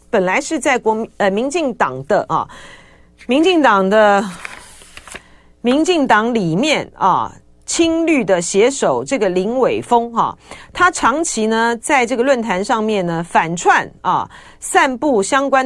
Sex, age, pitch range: female, 40-59, 200-285 Hz